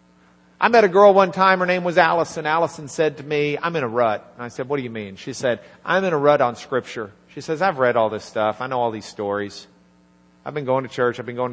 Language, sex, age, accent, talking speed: English, male, 50-69, American, 275 wpm